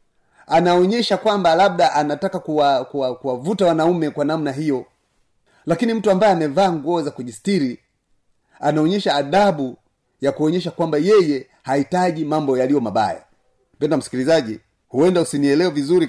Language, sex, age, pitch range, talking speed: Swahili, male, 40-59, 145-180 Hz, 125 wpm